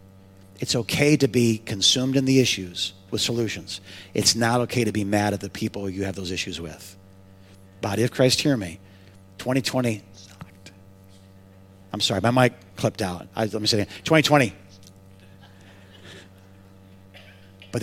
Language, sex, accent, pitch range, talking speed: English, male, American, 95-120 Hz, 145 wpm